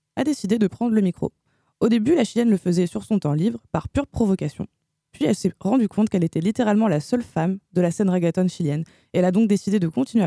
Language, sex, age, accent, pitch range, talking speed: French, female, 20-39, French, 165-210 Hz, 245 wpm